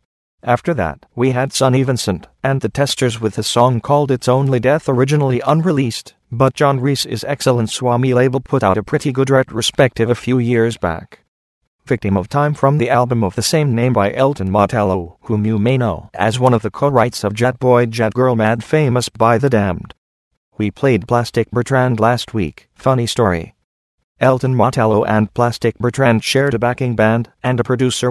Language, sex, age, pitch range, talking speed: English, male, 40-59, 110-130 Hz, 185 wpm